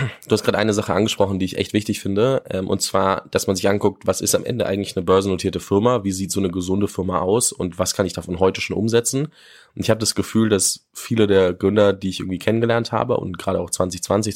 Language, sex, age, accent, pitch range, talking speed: German, male, 20-39, German, 90-105 Hz, 245 wpm